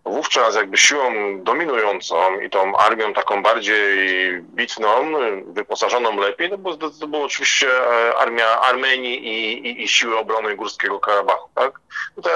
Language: Polish